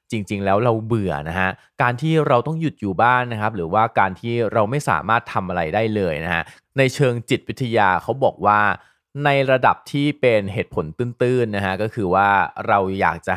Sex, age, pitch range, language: male, 20-39, 95-125 Hz, Thai